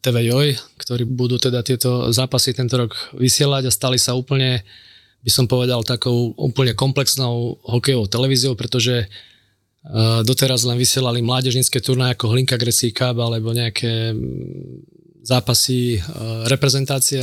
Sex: male